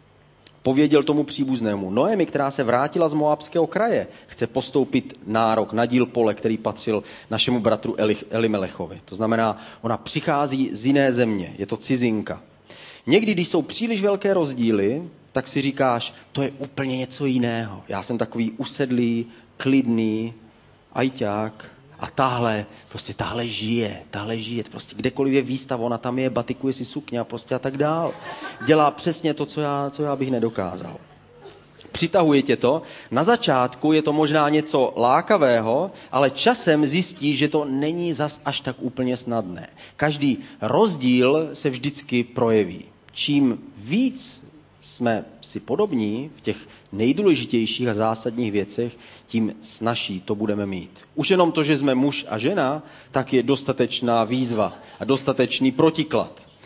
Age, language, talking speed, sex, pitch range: 30-49, Czech, 145 wpm, male, 115-155 Hz